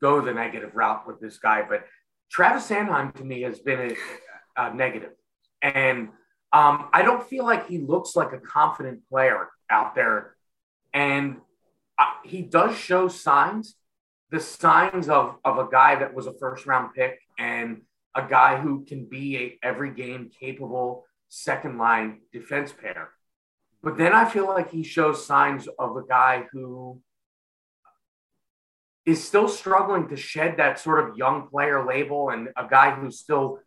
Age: 30-49